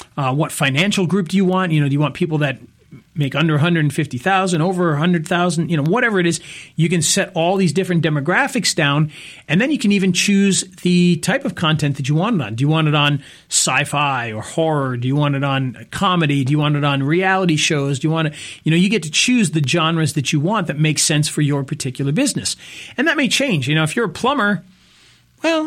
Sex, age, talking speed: male, 40-59, 235 wpm